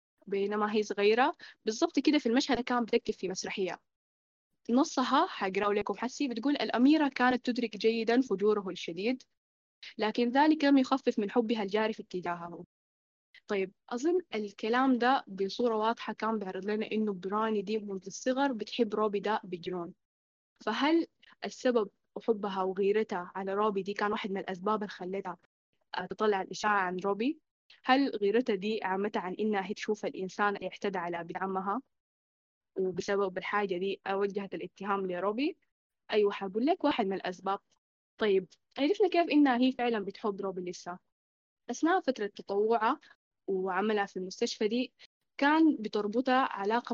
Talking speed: 135 wpm